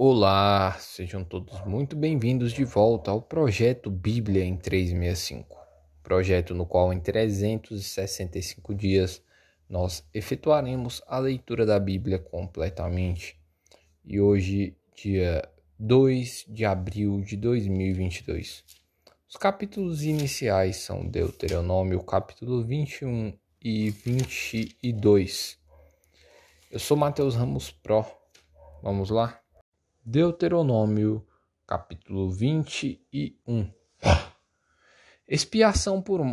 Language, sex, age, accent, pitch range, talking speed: Portuguese, male, 20-39, Brazilian, 95-130 Hz, 90 wpm